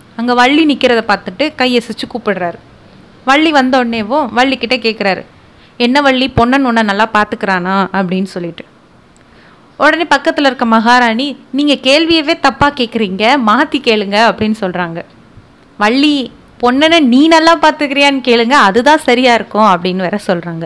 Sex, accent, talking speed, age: female, native, 125 wpm, 20-39